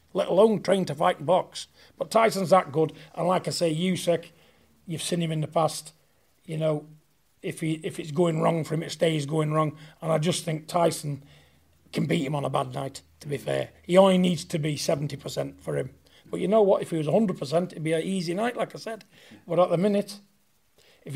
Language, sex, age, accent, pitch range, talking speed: English, male, 40-59, British, 155-185 Hz, 225 wpm